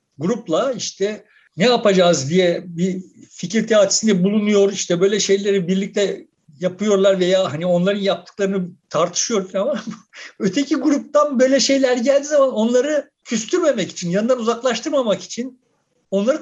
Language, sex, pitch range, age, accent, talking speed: Turkish, male, 185-260 Hz, 60-79, native, 115 wpm